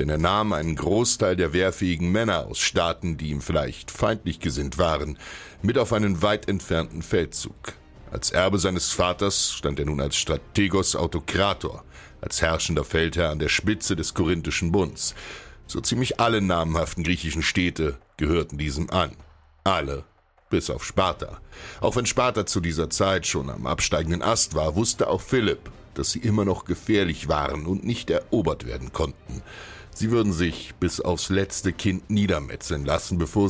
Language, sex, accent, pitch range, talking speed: German, male, German, 80-100 Hz, 160 wpm